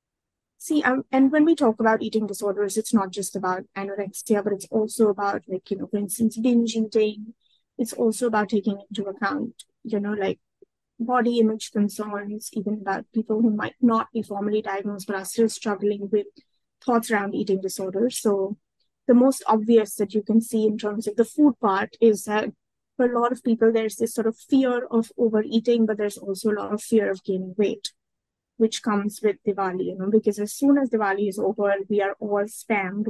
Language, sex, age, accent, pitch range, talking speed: English, female, 20-39, Indian, 200-230 Hz, 200 wpm